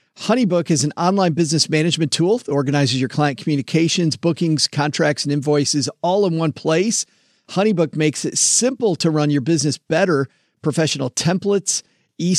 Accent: American